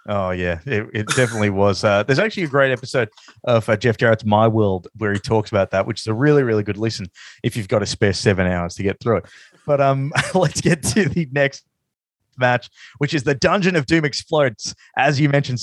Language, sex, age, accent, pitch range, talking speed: English, male, 20-39, Australian, 110-150 Hz, 225 wpm